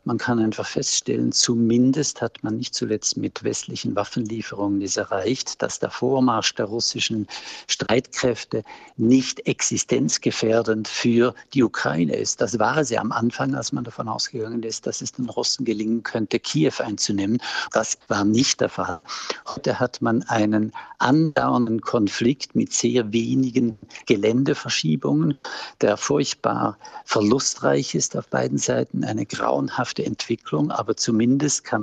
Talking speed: 140 wpm